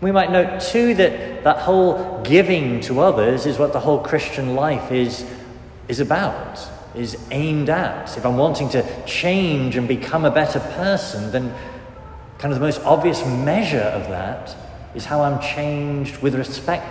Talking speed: 165 wpm